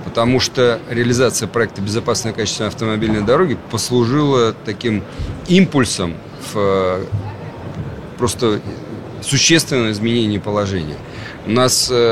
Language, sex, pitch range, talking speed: Russian, male, 95-115 Hz, 90 wpm